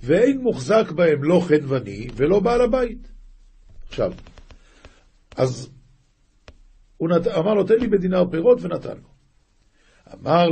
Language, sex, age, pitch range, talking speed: Hebrew, male, 50-69, 115-195 Hz, 120 wpm